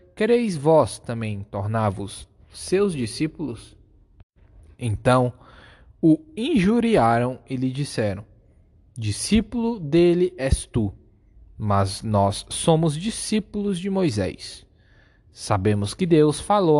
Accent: Brazilian